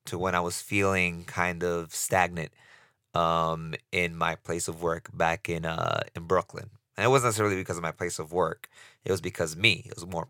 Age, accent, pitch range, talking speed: 20-39, American, 85-105 Hz, 215 wpm